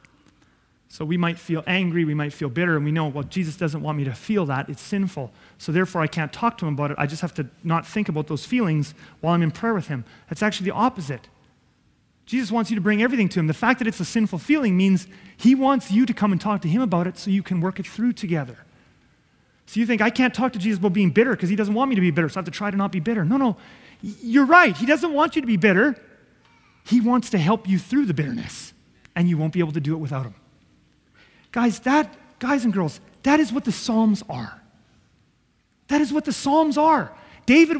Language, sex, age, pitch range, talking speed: English, male, 30-49, 170-245 Hz, 250 wpm